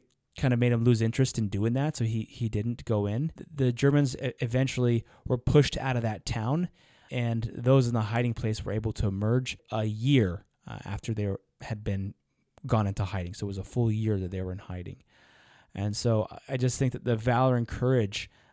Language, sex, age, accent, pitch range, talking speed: English, male, 20-39, American, 105-130 Hz, 205 wpm